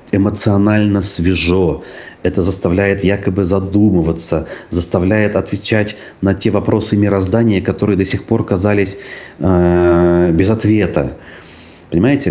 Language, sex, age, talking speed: Russian, male, 30-49, 100 wpm